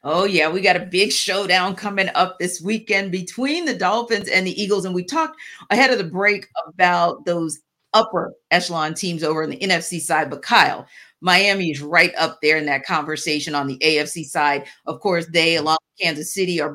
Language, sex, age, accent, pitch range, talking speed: English, female, 40-59, American, 165-210 Hz, 200 wpm